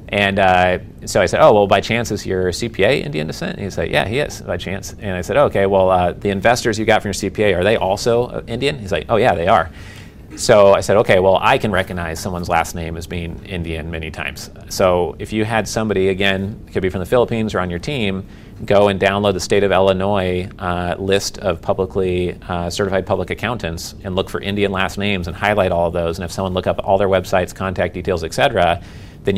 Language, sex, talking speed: English, male, 240 wpm